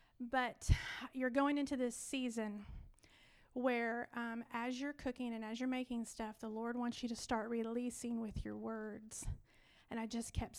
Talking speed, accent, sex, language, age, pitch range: 170 wpm, American, female, English, 40-59, 230-255 Hz